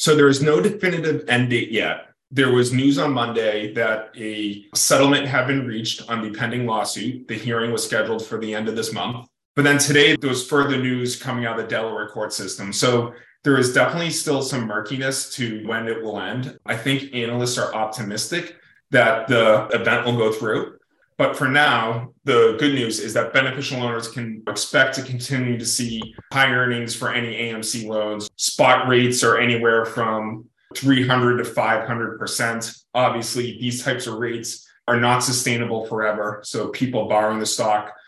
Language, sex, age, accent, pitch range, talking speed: English, male, 30-49, American, 110-125 Hz, 180 wpm